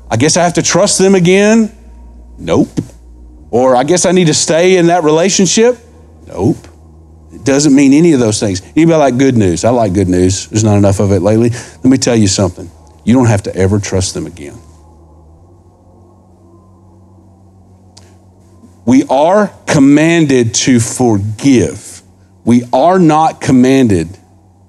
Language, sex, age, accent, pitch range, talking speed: English, male, 50-69, American, 90-145 Hz, 155 wpm